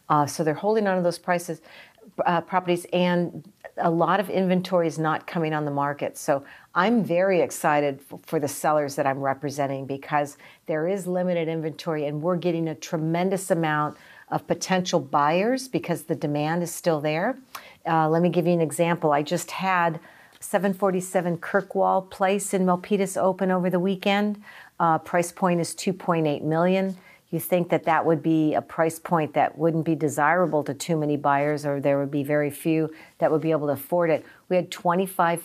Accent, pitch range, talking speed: American, 150-185 Hz, 185 wpm